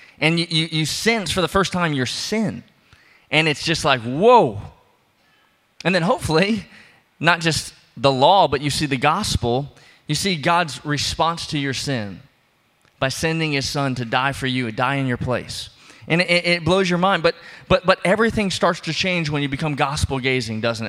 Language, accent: English, American